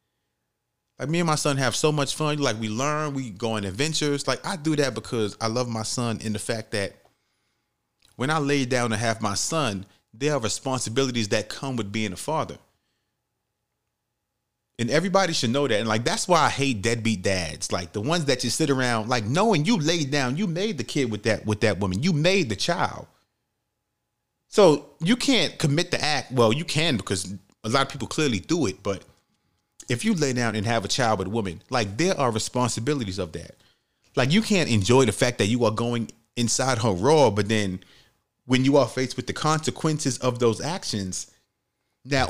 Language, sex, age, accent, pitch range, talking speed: English, male, 30-49, American, 110-150 Hz, 205 wpm